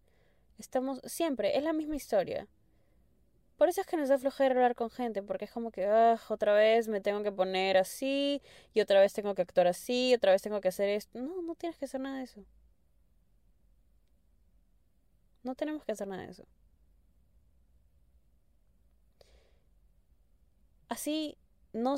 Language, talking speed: Spanish, 160 wpm